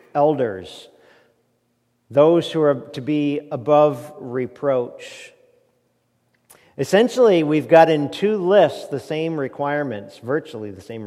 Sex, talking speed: male, 110 wpm